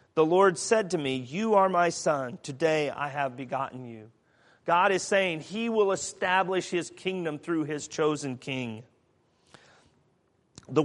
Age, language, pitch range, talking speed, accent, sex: 40-59, English, 140-180 Hz, 150 wpm, American, male